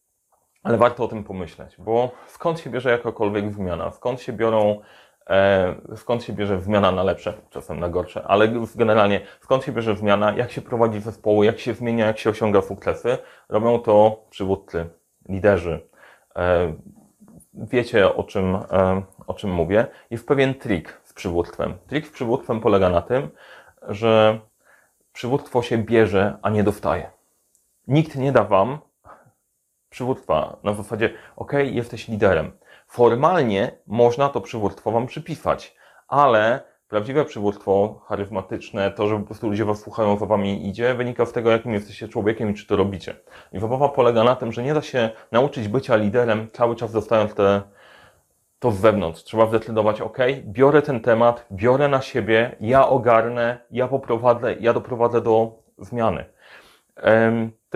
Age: 30-49